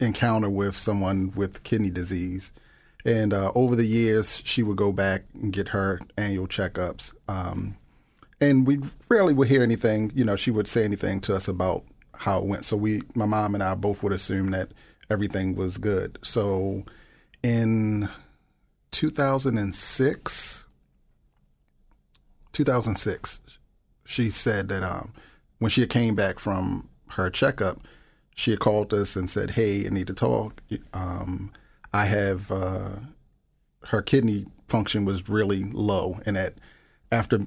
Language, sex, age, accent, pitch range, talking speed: English, male, 40-59, American, 95-115 Hz, 145 wpm